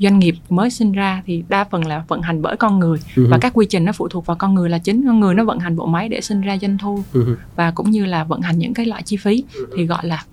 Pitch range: 165-215 Hz